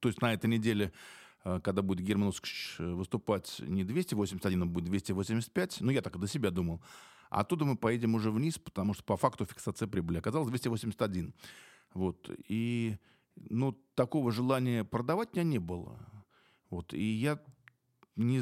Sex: male